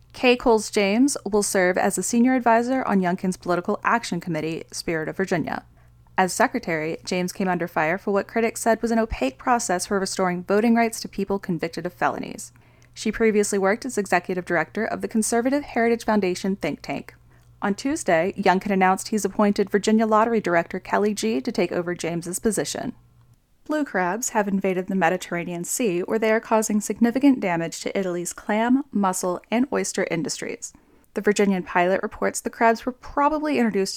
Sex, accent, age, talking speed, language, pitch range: female, American, 10-29, 170 wpm, English, 180-230 Hz